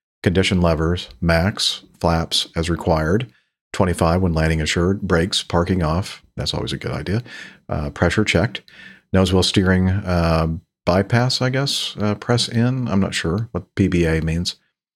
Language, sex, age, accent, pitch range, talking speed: English, male, 50-69, American, 85-110 Hz, 150 wpm